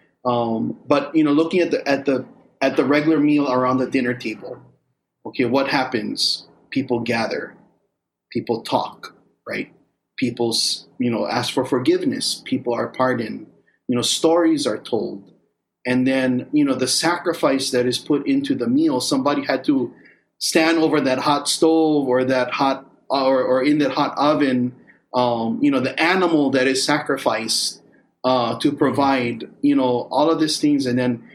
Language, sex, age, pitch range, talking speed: English, male, 30-49, 125-160 Hz, 165 wpm